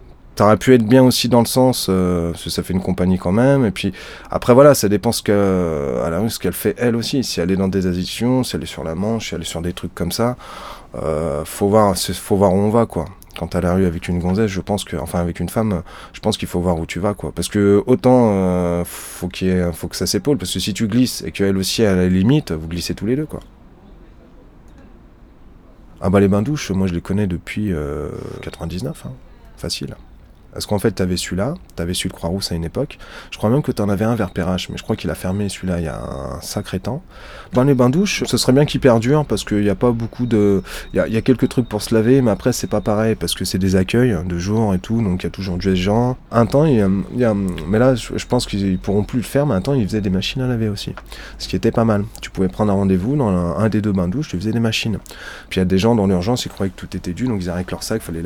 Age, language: 30-49, French